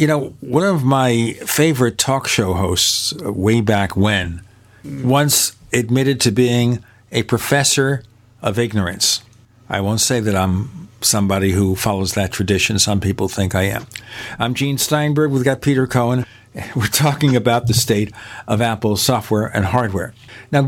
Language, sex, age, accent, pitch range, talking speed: English, male, 50-69, American, 110-140 Hz, 155 wpm